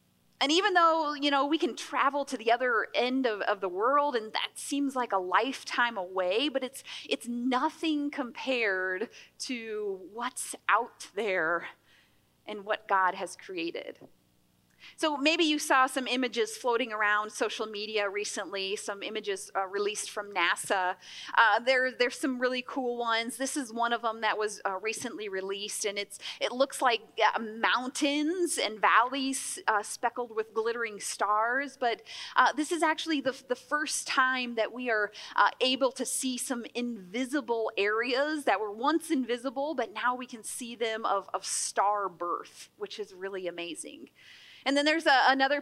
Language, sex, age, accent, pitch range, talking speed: English, female, 30-49, American, 215-275 Hz, 165 wpm